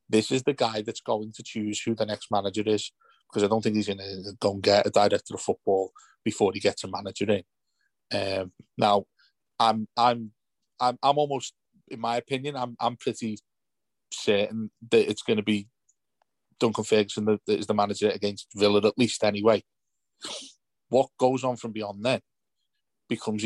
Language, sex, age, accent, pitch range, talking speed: English, male, 30-49, British, 105-125 Hz, 175 wpm